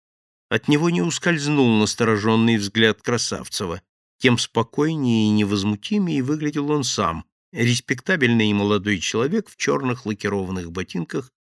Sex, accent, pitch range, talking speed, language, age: male, native, 100-145 Hz, 115 wpm, Russian, 50-69